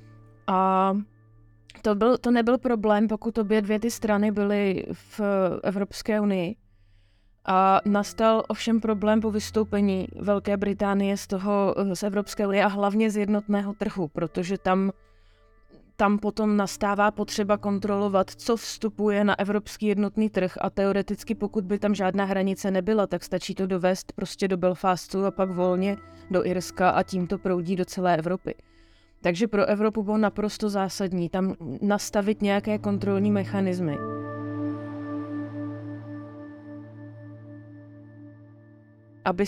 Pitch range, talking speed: 175-210 Hz, 130 wpm